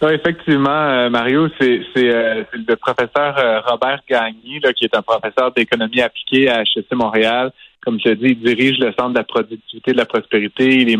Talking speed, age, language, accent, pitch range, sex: 220 wpm, 30-49, French, Canadian, 110-130 Hz, male